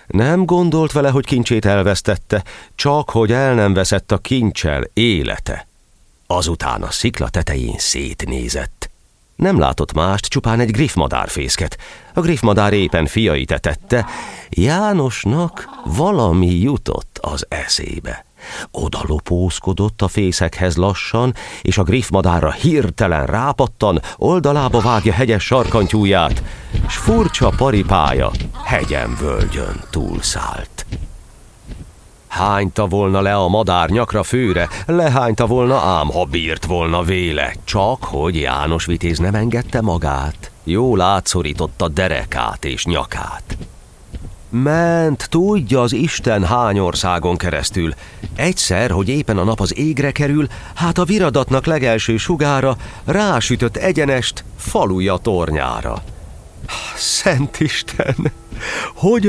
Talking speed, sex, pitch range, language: 110 wpm, male, 90-130 Hz, Hungarian